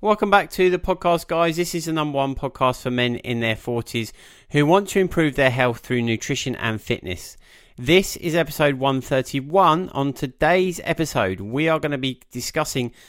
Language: English